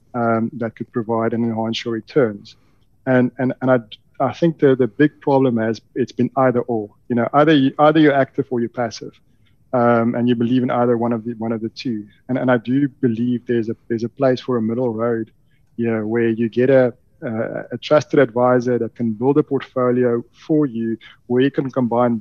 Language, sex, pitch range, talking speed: English, male, 120-140 Hz, 220 wpm